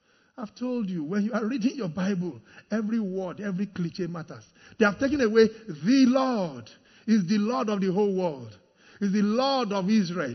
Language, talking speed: English, 185 wpm